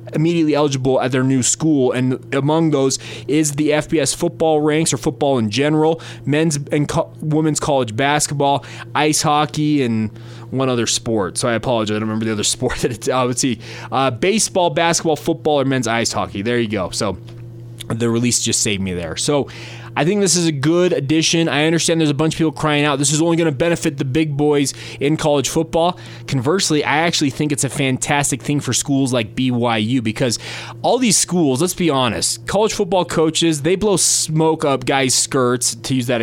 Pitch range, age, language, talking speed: 120-160 Hz, 20-39, English, 200 wpm